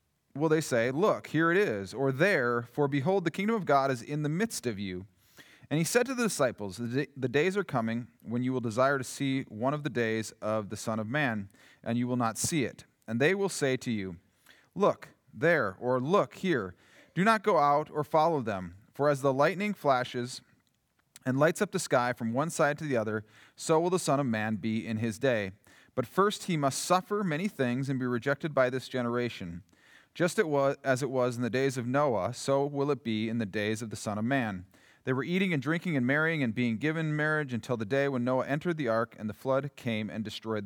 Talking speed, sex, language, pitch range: 230 wpm, male, English, 115-150 Hz